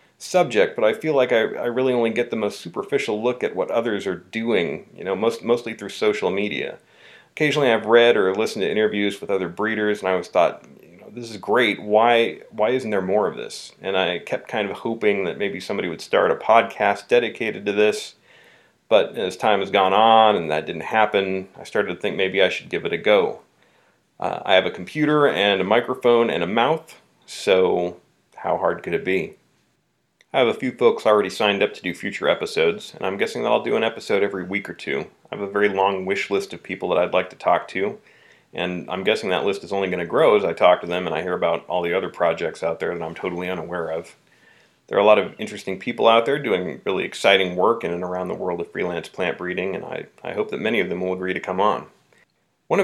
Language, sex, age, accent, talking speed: English, male, 40-59, American, 240 wpm